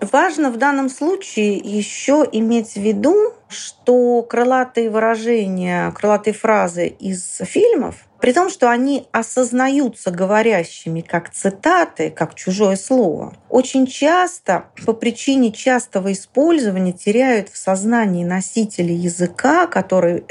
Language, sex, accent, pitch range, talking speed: Russian, female, native, 190-250 Hz, 110 wpm